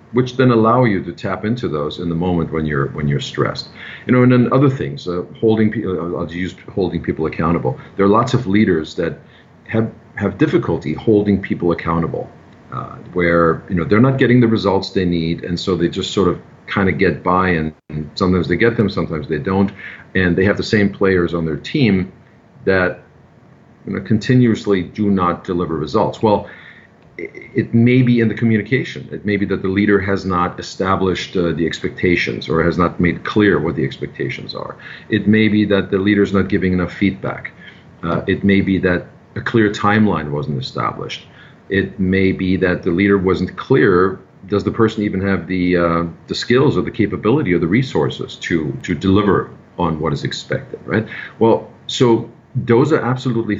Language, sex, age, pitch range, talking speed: English, male, 50-69, 85-110 Hz, 190 wpm